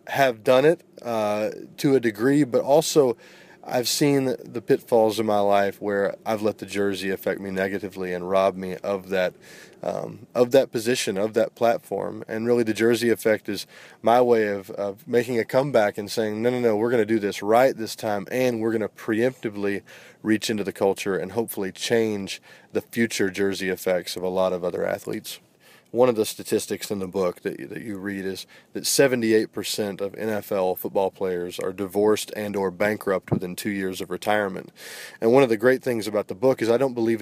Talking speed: 200 wpm